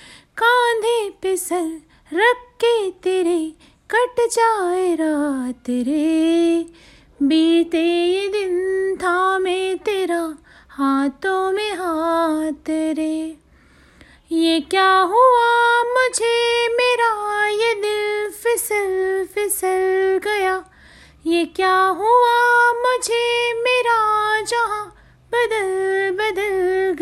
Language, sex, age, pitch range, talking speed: Hindi, female, 30-49, 300-390 Hz, 80 wpm